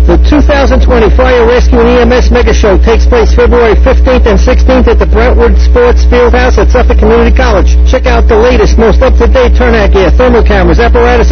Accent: American